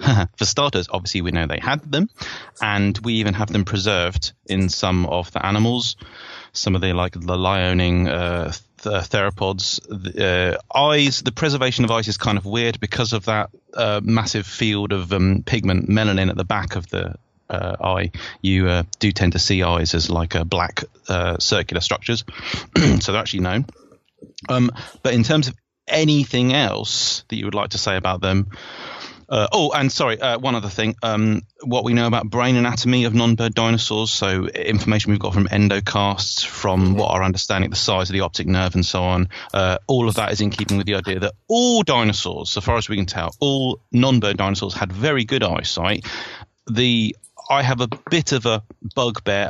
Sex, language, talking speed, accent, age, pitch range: male, English, 195 wpm, British, 30-49, 95-115 Hz